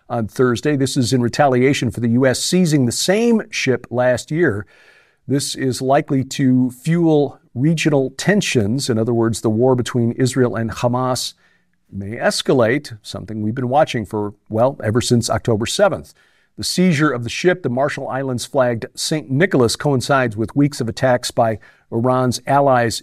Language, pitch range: English, 115-145 Hz